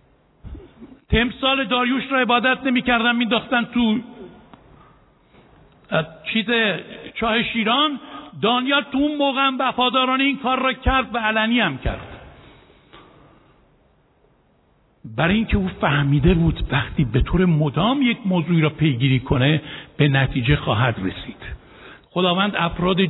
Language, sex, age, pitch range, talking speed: Persian, male, 60-79, 150-235 Hz, 110 wpm